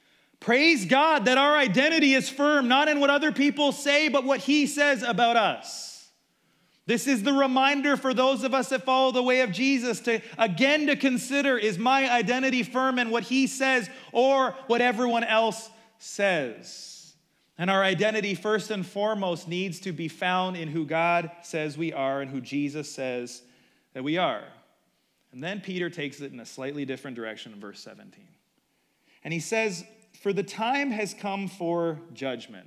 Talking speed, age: 175 wpm, 30-49